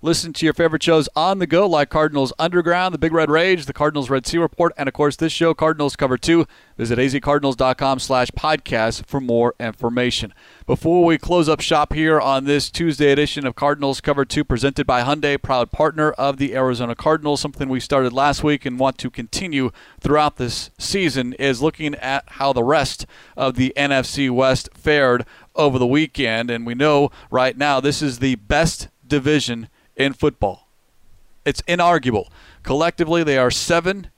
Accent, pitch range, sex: American, 130-150 Hz, male